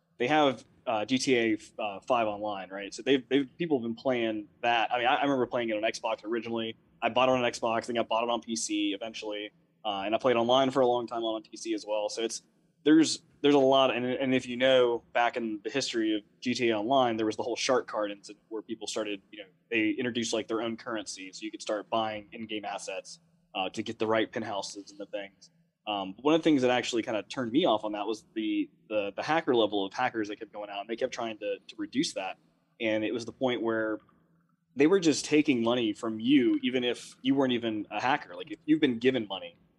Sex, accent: male, American